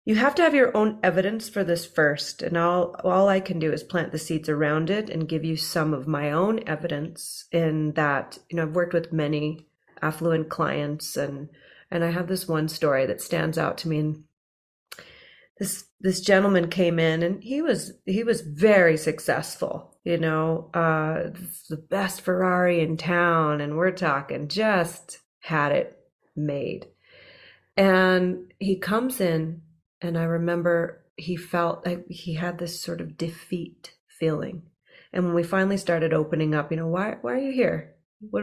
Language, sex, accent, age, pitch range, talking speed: English, female, American, 30-49, 160-185 Hz, 175 wpm